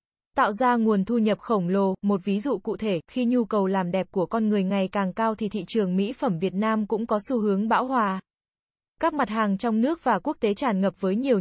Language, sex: Vietnamese, female